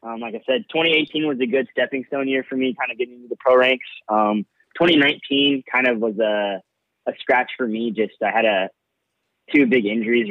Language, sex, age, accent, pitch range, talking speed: English, male, 20-39, American, 100-125 Hz, 215 wpm